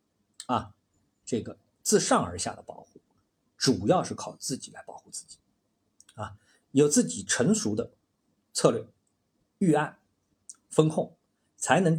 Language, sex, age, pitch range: Chinese, male, 50-69, 105-145 Hz